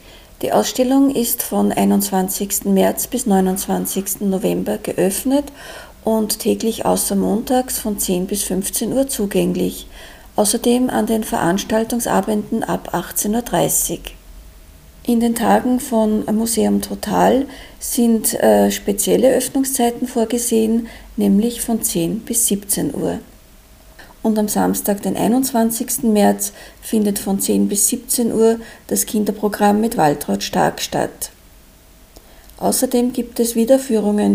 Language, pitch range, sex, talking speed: German, 195-240 Hz, female, 115 wpm